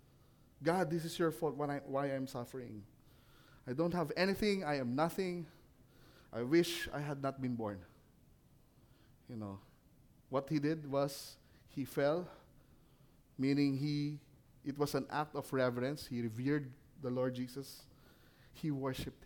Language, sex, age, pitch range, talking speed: English, male, 20-39, 115-145 Hz, 145 wpm